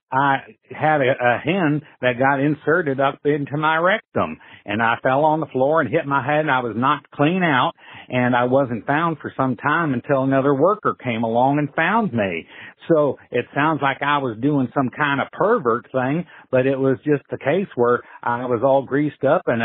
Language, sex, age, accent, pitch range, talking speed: English, male, 60-79, American, 135-170 Hz, 210 wpm